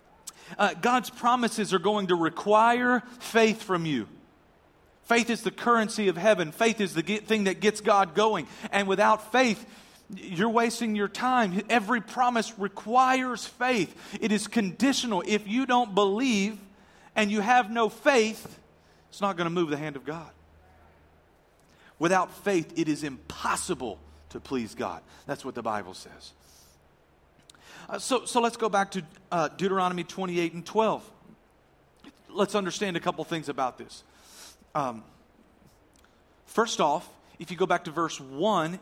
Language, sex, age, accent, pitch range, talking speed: English, male, 40-59, American, 160-220 Hz, 150 wpm